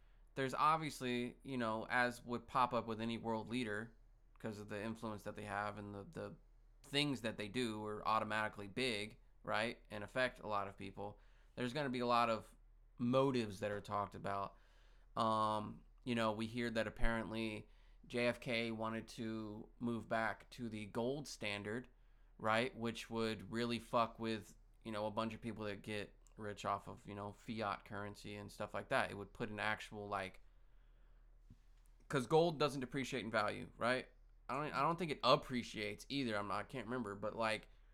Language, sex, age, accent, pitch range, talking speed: English, male, 20-39, American, 105-120 Hz, 185 wpm